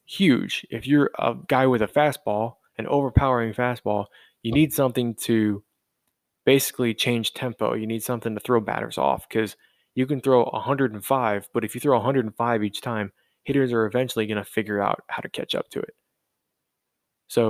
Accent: American